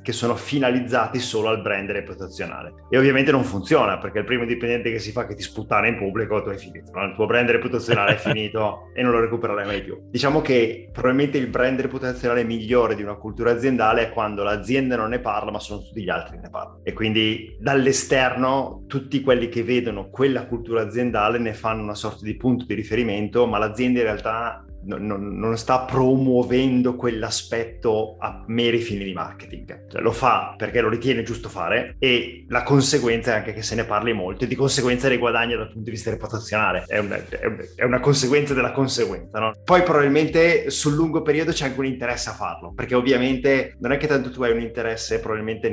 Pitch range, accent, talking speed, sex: 105-125 Hz, native, 200 wpm, male